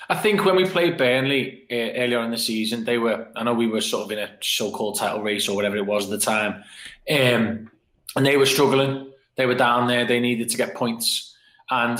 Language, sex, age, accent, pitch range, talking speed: English, male, 20-39, British, 125-145 Hz, 230 wpm